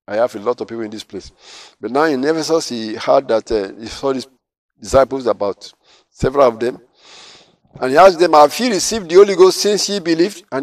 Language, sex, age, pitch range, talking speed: English, male, 50-69, 115-160 Hz, 220 wpm